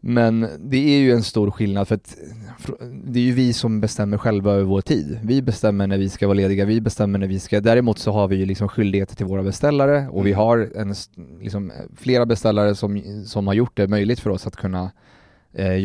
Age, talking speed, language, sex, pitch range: 30-49, 225 wpm, Swedish, male, 100-115 Hz